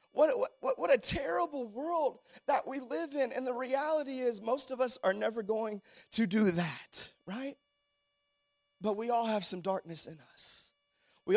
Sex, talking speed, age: male, 175 wpm, 30-49